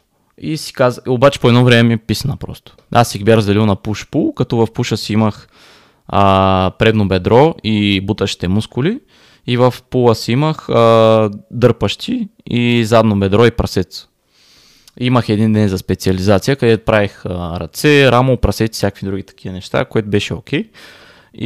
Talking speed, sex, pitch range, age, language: 160 wpm, male, 100-125 Hz, 20-39, Bulgarian